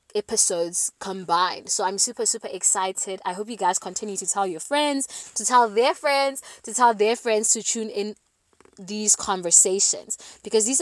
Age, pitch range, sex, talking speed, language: 20-39, 185-220 Hz, female, 170 wpm, English